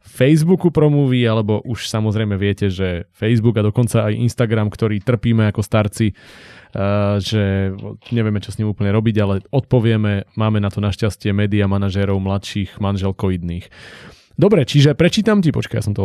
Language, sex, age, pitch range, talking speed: Slovak, male, 20-39, 100-125 Hz, 155 wpm